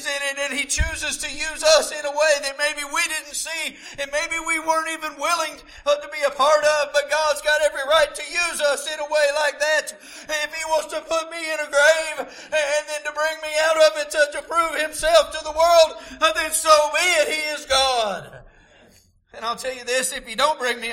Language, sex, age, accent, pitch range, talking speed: English, male, 50-69, American, 235-305 Hz, 225 wpm